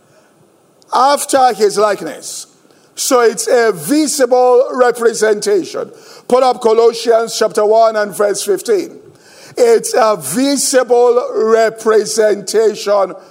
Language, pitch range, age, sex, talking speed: English, 230-310 Hz, 50-69, male, 90 wpm